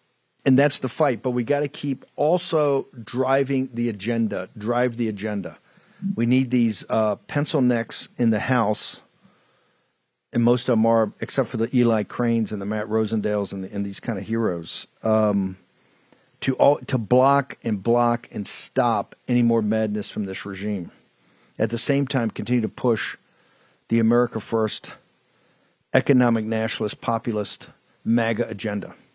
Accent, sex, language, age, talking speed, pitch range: American, male, English, 50-69, 150 wpm, 115-135 Hz